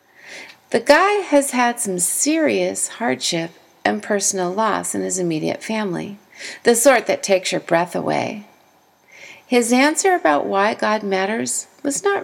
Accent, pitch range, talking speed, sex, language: American, 185-260 Hz, 140 wpm, female, English